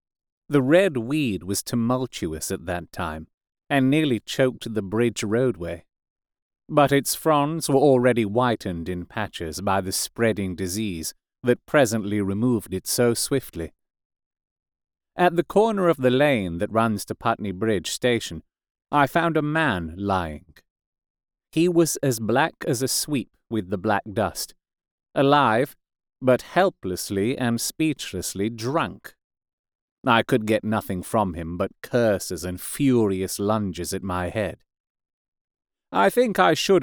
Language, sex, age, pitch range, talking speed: English, male, 30-49, 95-130 Hz, 135 wpm